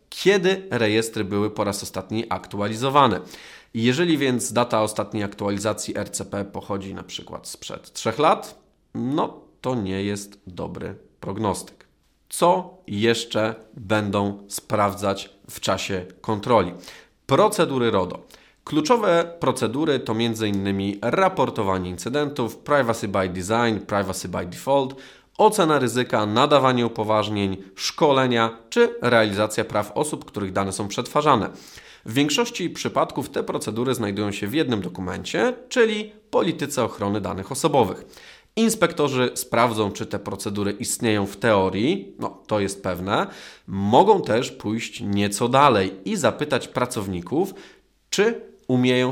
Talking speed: 115 wpm